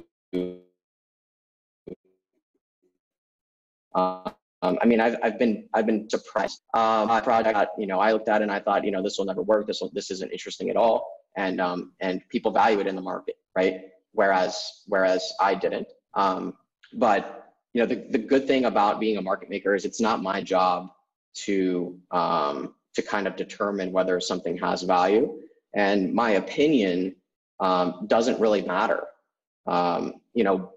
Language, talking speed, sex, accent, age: English, 170 wpm, male, American, 20-39